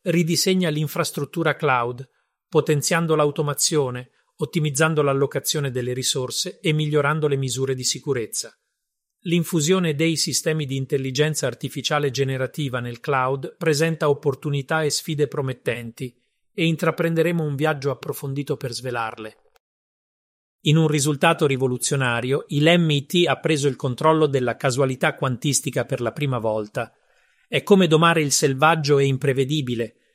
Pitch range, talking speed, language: 130-160 Hz, 120 wpm, Italian